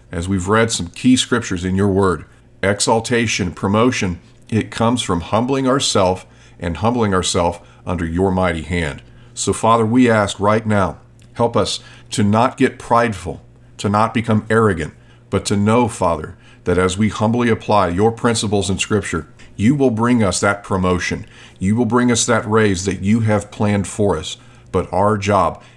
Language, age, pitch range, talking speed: English, 50-69, 95-120 Hz, 170 wpm